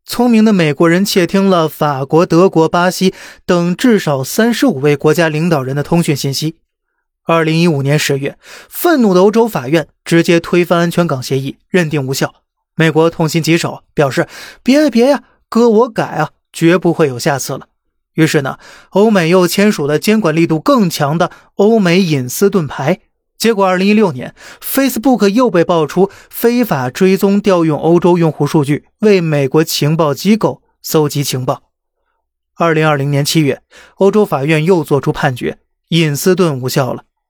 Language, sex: Chinese, male